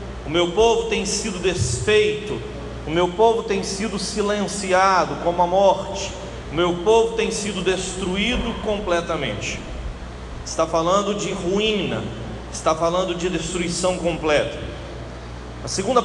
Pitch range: 170-215 Hz